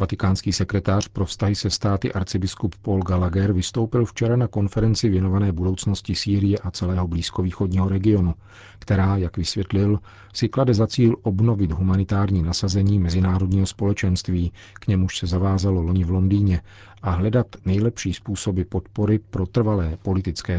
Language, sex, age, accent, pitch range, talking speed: Czech, male, 40-59, native, 90-100 Hz, 135 wpm